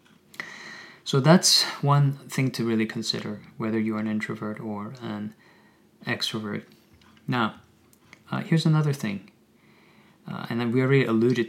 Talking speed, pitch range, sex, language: 130 wpm, 110-130 Hz, male, English